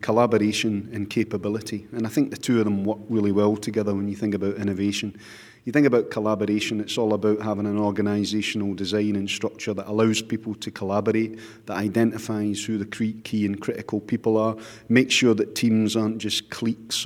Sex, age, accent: male, 30-49, British